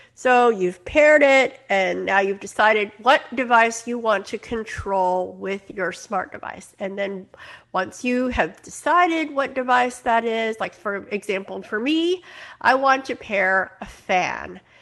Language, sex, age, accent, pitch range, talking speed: English, female, 50-69, American, 195-255 Hz, 160 wpm